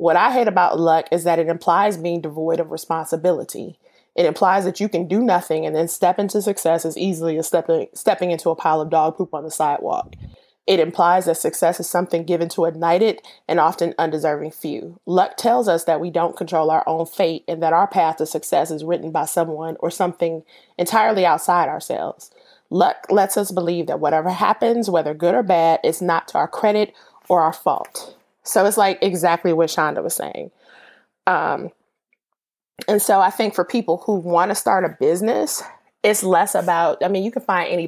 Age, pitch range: 20-39, 165-195 Hz